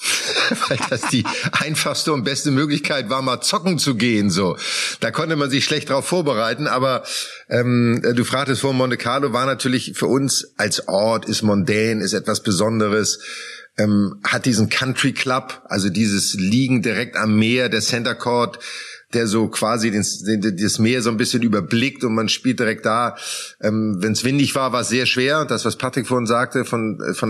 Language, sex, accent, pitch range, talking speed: German, male, German, 110-135 Hz, 185 wpm